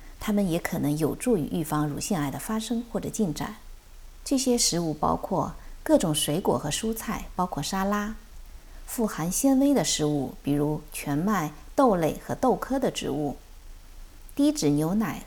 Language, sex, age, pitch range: Chinese, female, 50-69, 155-235 Hz